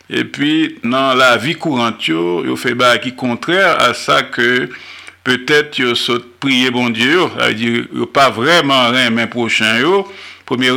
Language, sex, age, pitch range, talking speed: French, male, 50-69, 115-130 Hz, 165 wpm